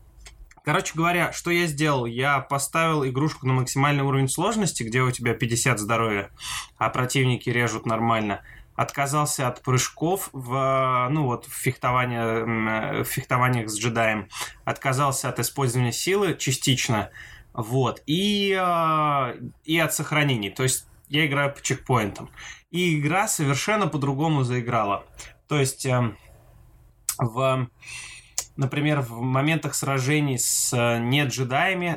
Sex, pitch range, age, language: male, 120-150 Hz, 20-39, Russian